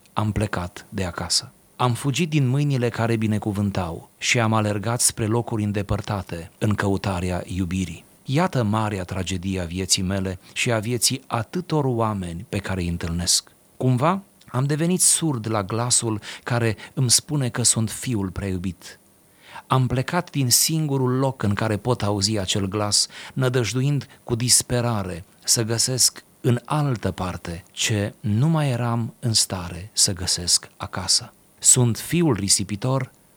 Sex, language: male, Romanian